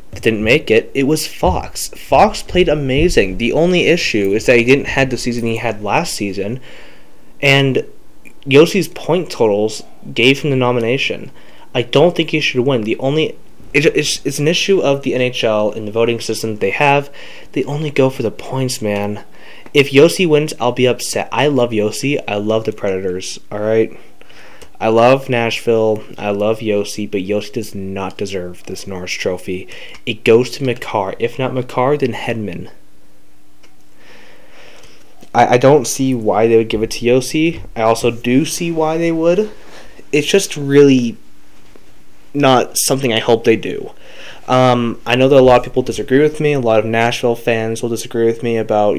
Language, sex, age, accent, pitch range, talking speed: English, male, 20-39, American, 110-135 Hz, 180 wpm